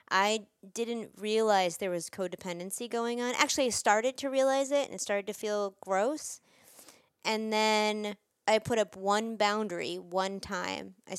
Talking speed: 160 wpm